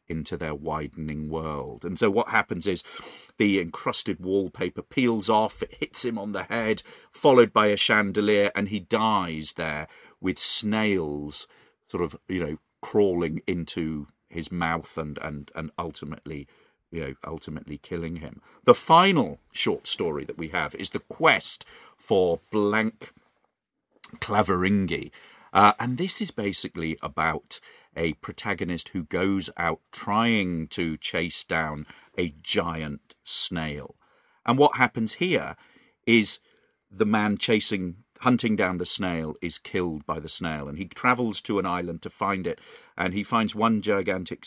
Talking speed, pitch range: 145 wpm, 80-105 Hz